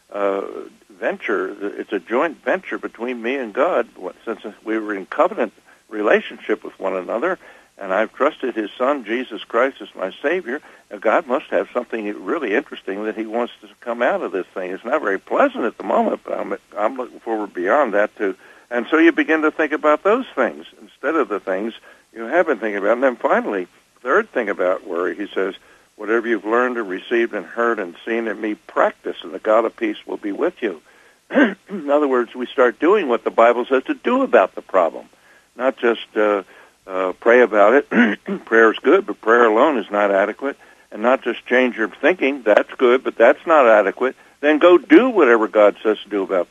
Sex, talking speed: male, 205 wpm